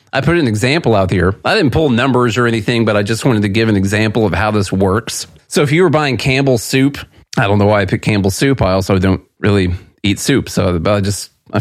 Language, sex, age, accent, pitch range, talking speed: English, male, 30-49, American, 95-125 Hz, 255 wpm